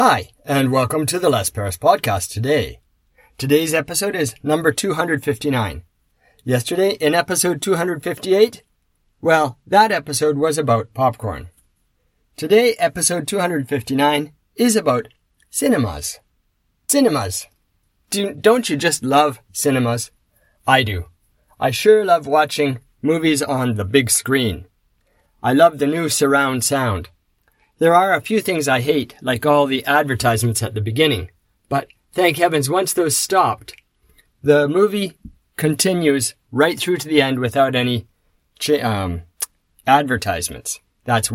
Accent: American